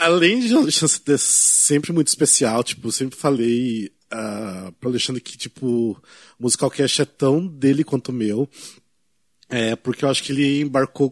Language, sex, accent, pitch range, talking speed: Portuguese, male, Brazilian, 125-165 Hz, 180 wpm